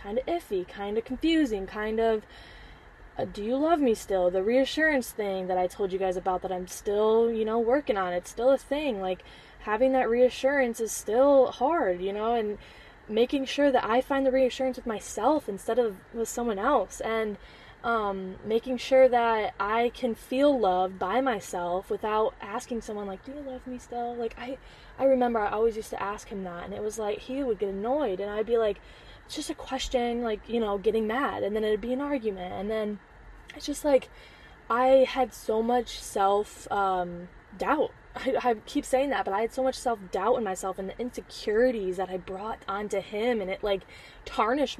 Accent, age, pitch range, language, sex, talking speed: American, 10-29, 200-255 Hz, English, female, 200 wpm